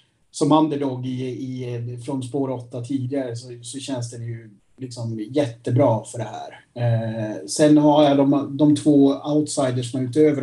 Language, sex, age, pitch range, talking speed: Swedish, male, 30-49, 120-145 Hz, 165 wpm